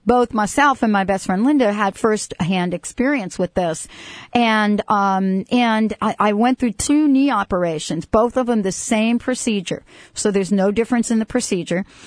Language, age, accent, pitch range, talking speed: English, 50-69, American, 180-230 Hz, 175 wpm